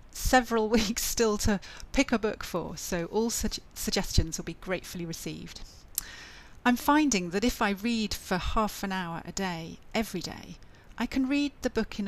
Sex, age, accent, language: female, 40-59, British, English